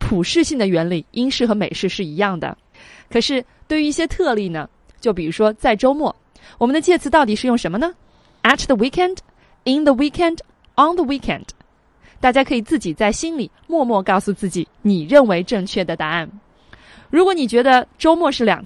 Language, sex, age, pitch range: Chinese, female, 20-39, 195-280 Hz